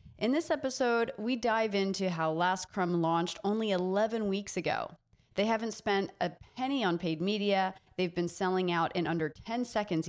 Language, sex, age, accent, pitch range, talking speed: English, female, 30-49, American, 175-225 Hz, 180 wpm